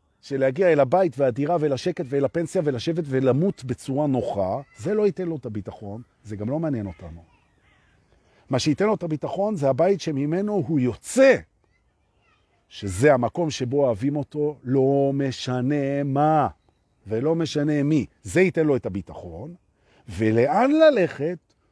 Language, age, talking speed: Hebrew, 50-69, 120 wpm